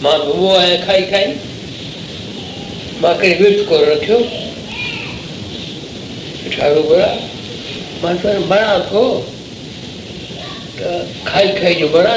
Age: 60-79